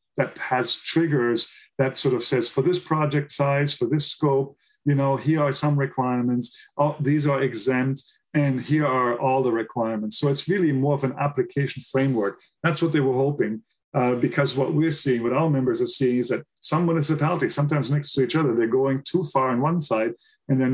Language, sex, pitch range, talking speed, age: English, male, 130-150 Hz, 205 wpm, 40-59